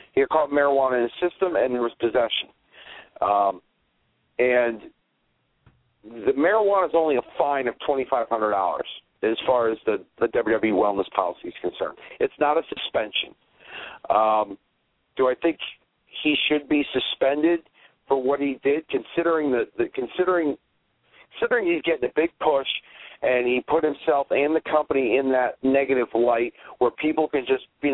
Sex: male